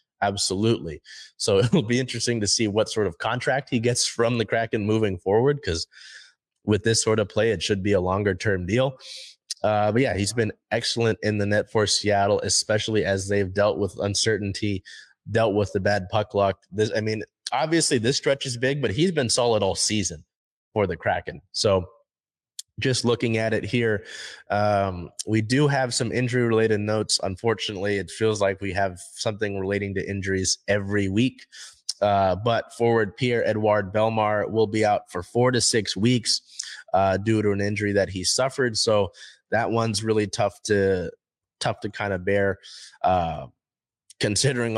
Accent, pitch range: American, 100-115 Hz